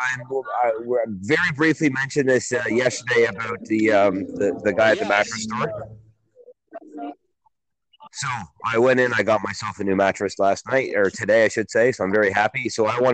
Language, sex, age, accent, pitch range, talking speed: English, male, 30-49, American, 105-135 Hz, 195 wpm